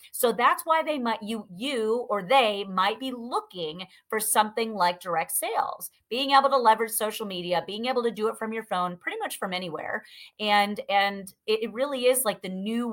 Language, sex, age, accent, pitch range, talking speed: English, female, 30-49, American, 200-280 Hz, 200 wpm